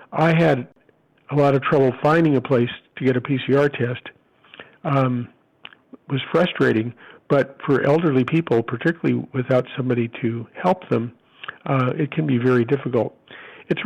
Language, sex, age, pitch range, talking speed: English, male, 50-69, 125-145 Hz, 150 wpm